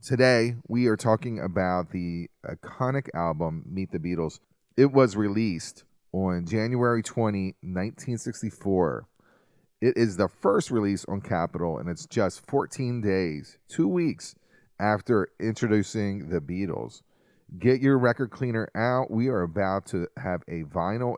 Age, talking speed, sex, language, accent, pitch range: 30-49, 135 wpm, male, English, American, 90-120 Hz